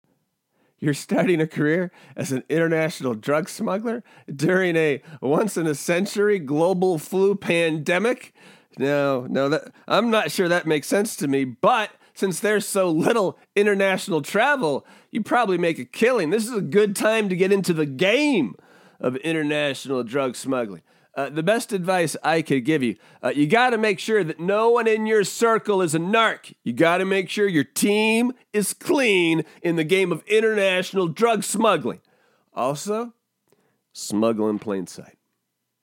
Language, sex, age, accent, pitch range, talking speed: English, male, 30-49, American, 155-225 Hz, 160 wpm